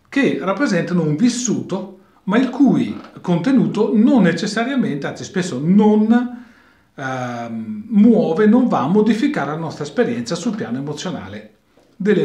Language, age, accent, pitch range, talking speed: Italian, 40-59, native, 150-220 Hz, 125 wpm